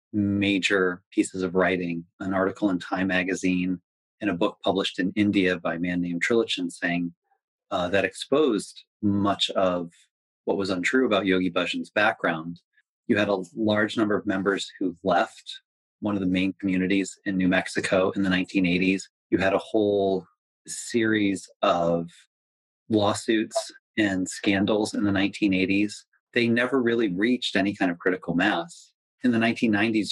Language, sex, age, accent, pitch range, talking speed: English, male, 30-49, American, 90-105 Hz, 155 wpm